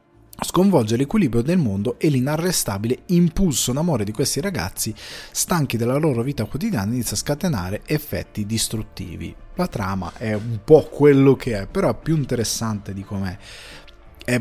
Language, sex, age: Italian, male, 20-39